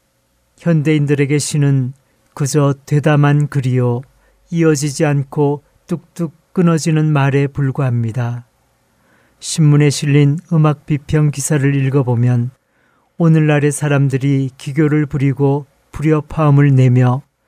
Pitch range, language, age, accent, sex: 135-155 Hz, Korean, 40-59, native, male